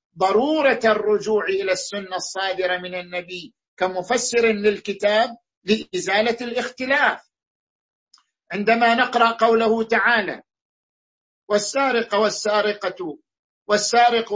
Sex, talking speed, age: male, 75 wpm, 50-69